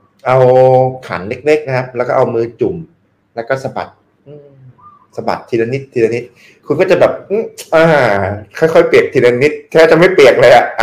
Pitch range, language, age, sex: 105-150 Hz, Thai, 20-39, male